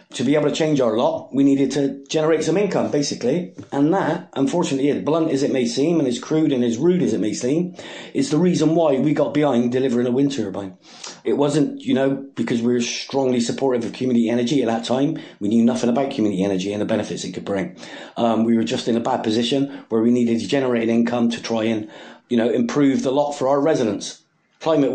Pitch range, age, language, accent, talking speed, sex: 110-140 Hz, 30-49, English, British, 235 wpm, male